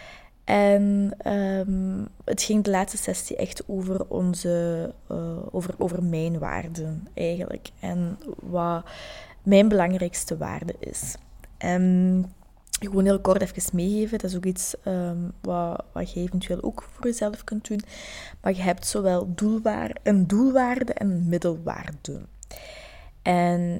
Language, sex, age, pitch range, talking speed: Dutch, female, 20-39, 175-210 Hz, 135 wpm